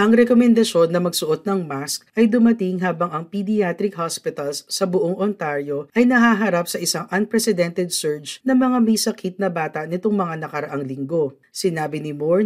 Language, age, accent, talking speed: Filipino, 40-59, native, 165 wpm